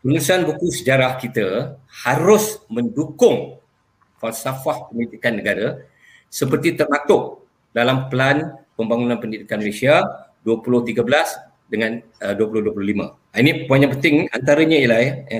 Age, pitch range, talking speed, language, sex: 50-69, 115-155 Hz, 100 wpm, Malay, male